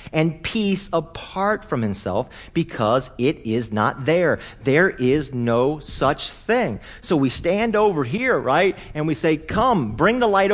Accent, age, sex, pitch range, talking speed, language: American, 40-59, male, 125-190 Hz, 160 wpm, English